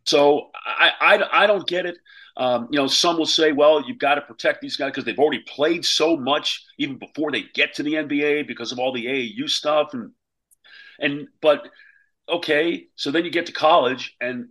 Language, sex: English, male